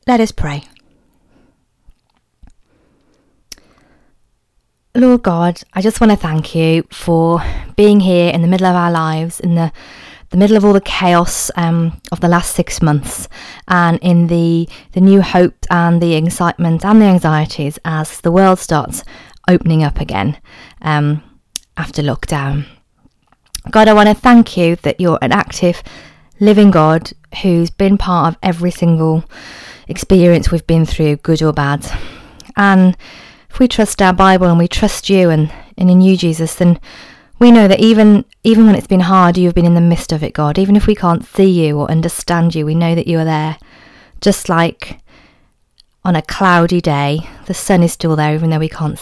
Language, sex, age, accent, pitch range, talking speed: English, female, 20-39, British, 160-190 Hz, 175 wpm